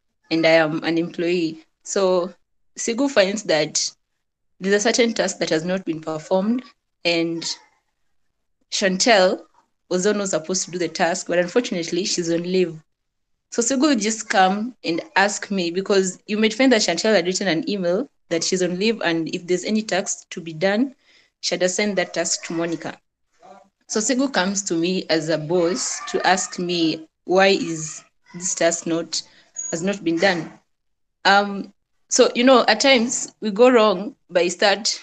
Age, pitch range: 20-39, 175-220 Hz